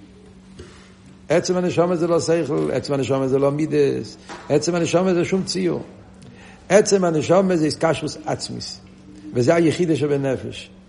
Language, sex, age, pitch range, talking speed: Hebrew, male, 60-79, 145-210 Hz, 75 wpm